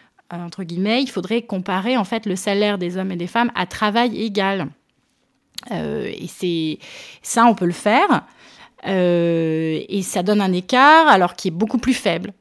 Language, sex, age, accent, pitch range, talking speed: French, female, 30-49, French, 185-235 Hz, 180 wpm